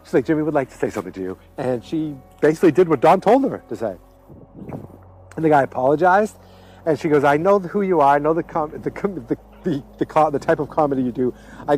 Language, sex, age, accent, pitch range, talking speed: English, male, 50-69, American, 115-160 Hz, 255 wpm